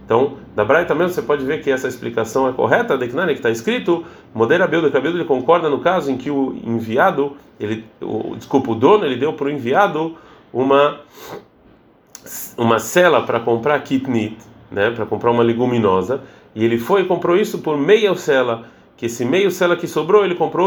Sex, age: male, 30-49